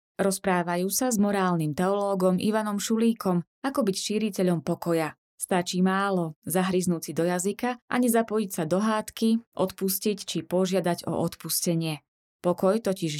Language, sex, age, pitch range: Slovak, female, 20-39, 170-205 Hz